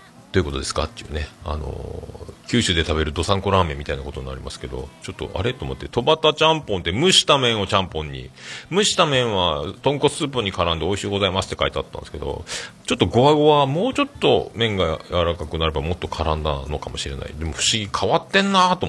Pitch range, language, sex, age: 80-115 Hz, Japanese, male, 40-59